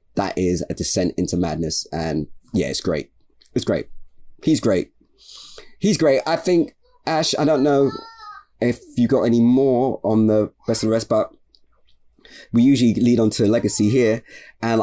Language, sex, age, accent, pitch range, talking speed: English, male, 20-39, British, 90-125 Hz, 170 wpm